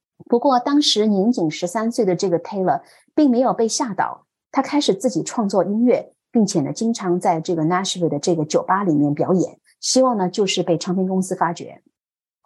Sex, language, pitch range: female, Chinese, 170-235 Hz